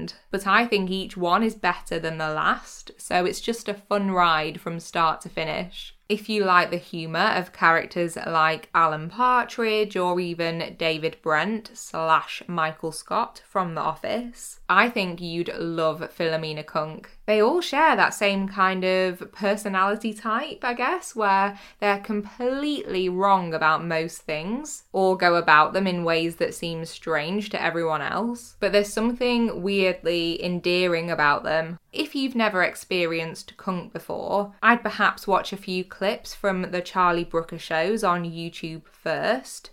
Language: English